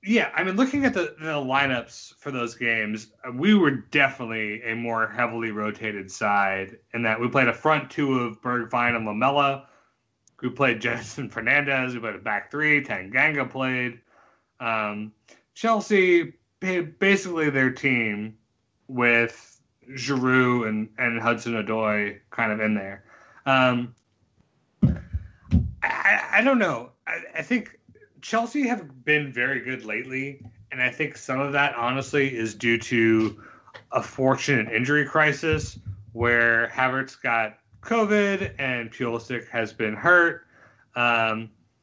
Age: 30-49